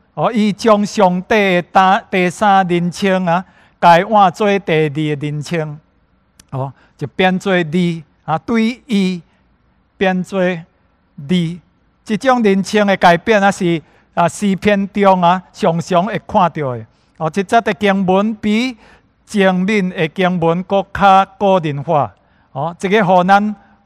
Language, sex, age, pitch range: English, male, 60-79, 160-200 Hz